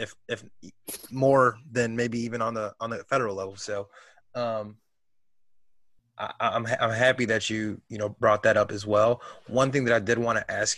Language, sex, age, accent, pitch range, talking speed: English, male, 20-39, American, 100-115 Hz, 200 wpm